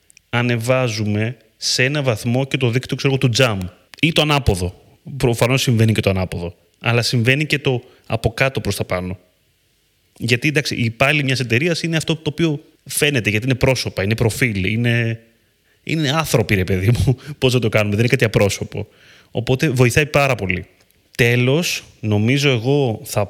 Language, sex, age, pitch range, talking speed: Greek, male, 30-49, 105-130 Hz, 165 wpm